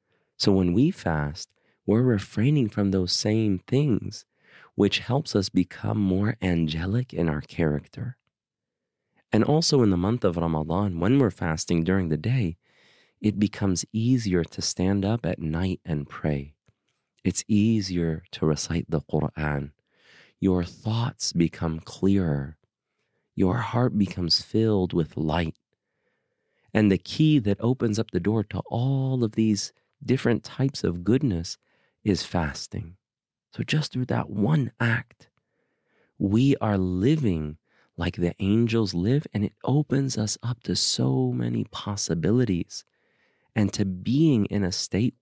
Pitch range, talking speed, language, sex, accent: 85-120 Hz, 140 wpm, English, male, American